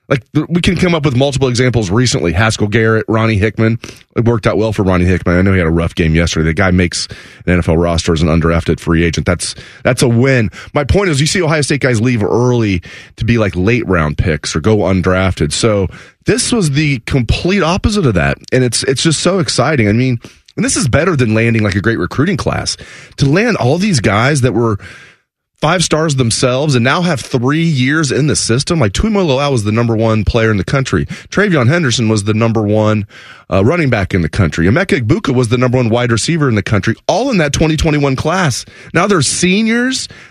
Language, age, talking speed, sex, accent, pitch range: English, 30-49, 220 wpm, male, American, 105-145 Hz